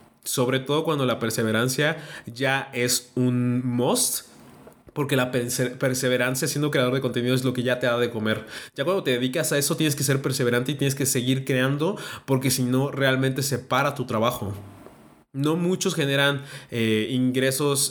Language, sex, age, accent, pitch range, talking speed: Spanish, male, 20-39, Mexican, 125-150 Hz, 175 wpm